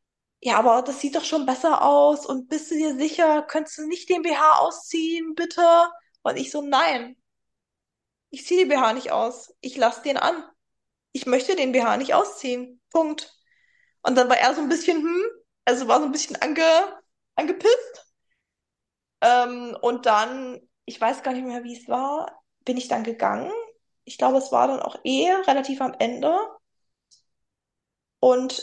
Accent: German